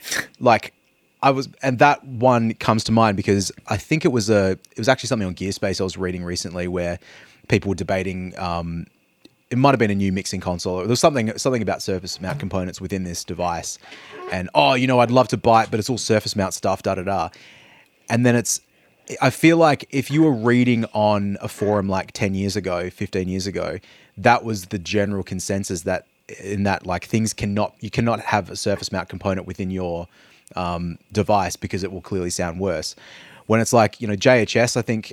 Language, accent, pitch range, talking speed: English, Australian, 95-115 Hz, 210 wpm